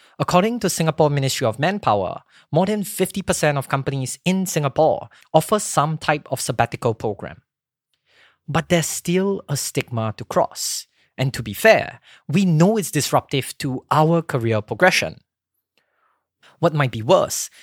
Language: English